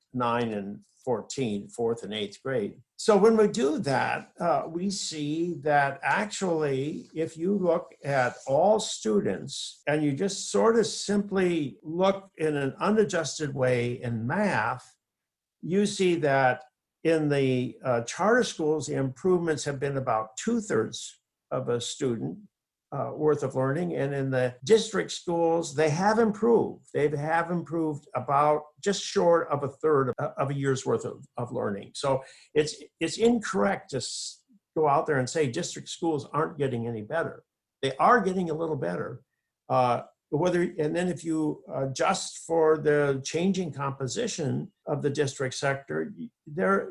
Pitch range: 135-180 Hz